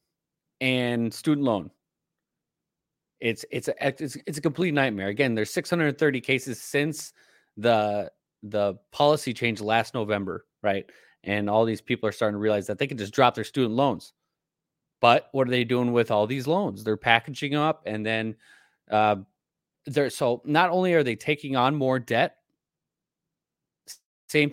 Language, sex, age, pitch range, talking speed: English, male, 20-39, 120-155 Hz, 160 wpm